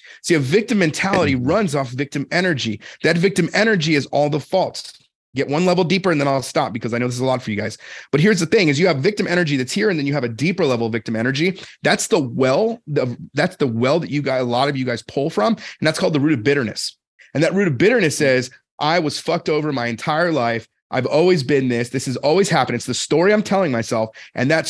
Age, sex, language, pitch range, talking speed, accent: 30-49, male, English, 135-180 Hz, 260 wpm, American